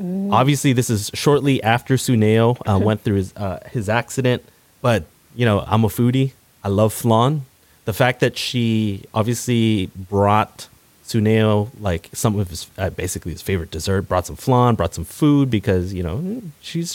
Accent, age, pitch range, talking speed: American, 30-49, 100-125 Hz, 170 wpm